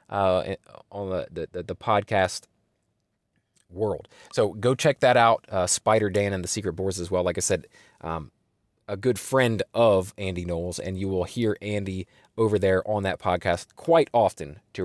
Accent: American